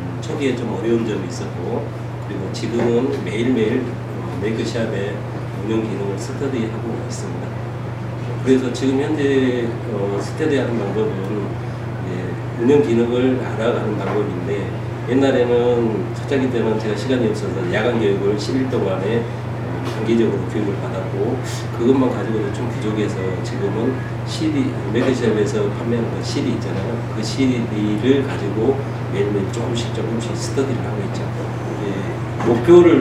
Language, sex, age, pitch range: Korean, male, 40-59, 115-130 Hz